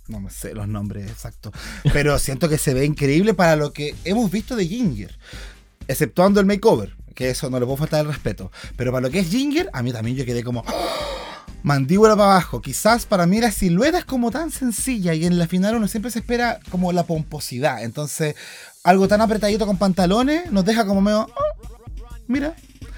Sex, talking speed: male, 200 wpm